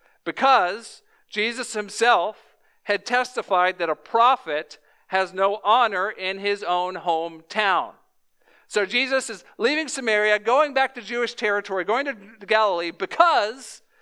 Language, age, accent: English, 50-69, American